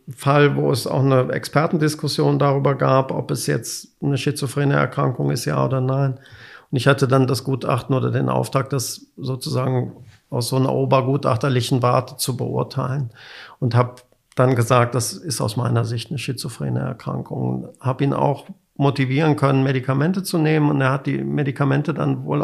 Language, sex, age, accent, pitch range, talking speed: German, male, 50-69, German, 130-145 Hz, 170 wpm